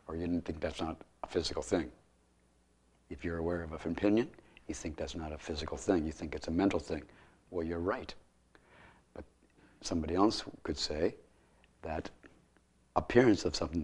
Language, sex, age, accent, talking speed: English, male, 60-79, American, 170 wpm